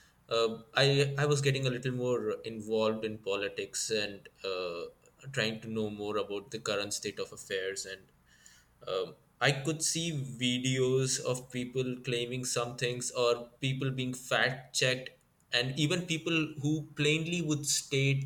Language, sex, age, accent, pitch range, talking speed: English, male, 20-39, Indian, 115-145 Hz, 150 wpm